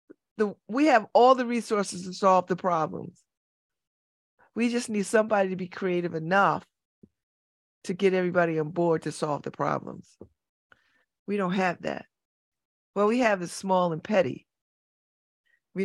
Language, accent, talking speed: English, American, 150 wpm